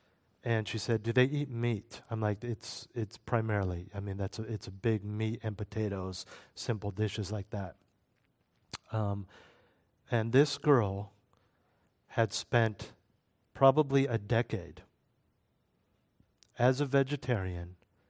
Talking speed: 125 wpm